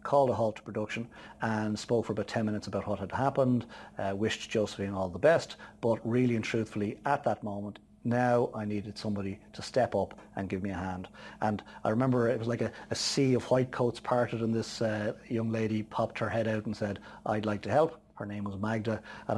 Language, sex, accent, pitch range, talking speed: English, male, Irish, 105-125 Hz, 225 wpm